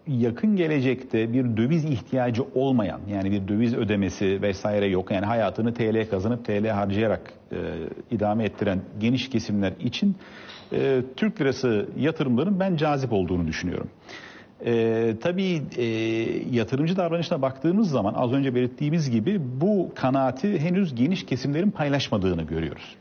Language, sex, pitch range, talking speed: Turkish, male, 110-135 Hz, 130 wpm